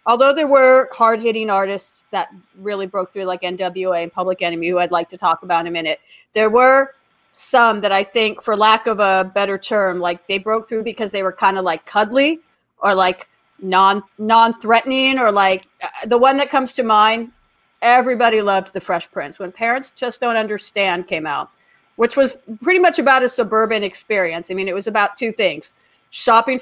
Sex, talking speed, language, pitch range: female, 195 wpm, English, 190-240 Hz